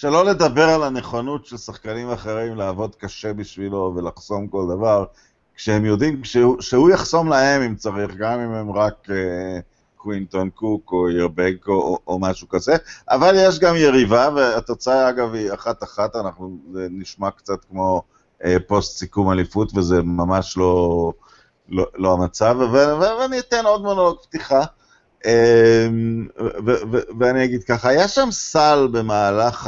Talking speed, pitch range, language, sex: 155 wpm, 100-130 Hz, Hebrew, male